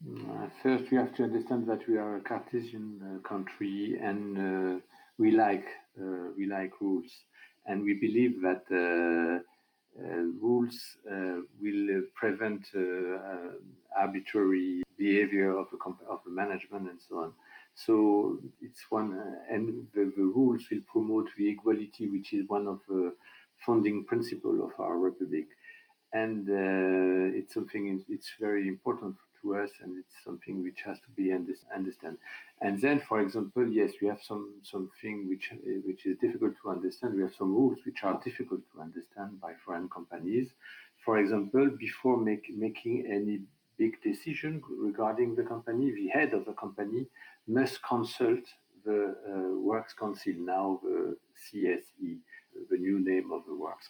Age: 50-69